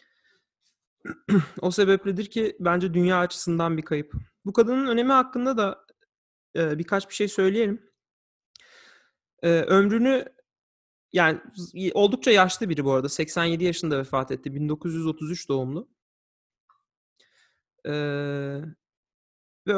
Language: Turkish